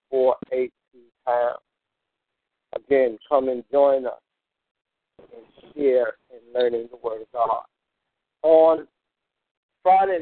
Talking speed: 90 wpm